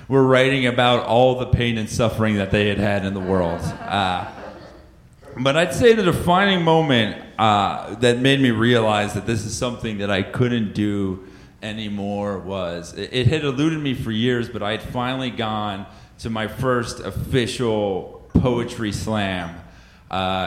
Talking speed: 165 wpm